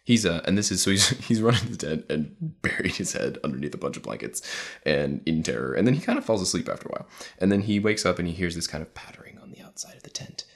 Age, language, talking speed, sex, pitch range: 20-39, English, 295 wpm, male, 85-105 Hz